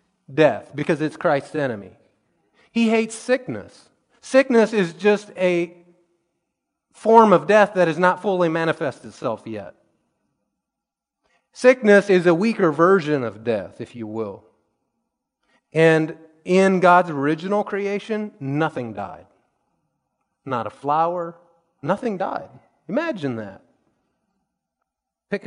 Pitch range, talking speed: 125-175 Hz, 110 wpm